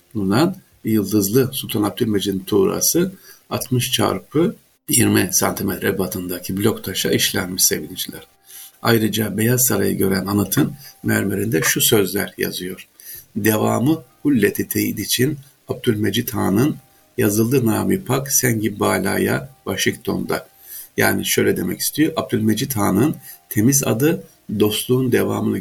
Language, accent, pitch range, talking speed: Turkish, native, 100-125 Hz, 105 wpm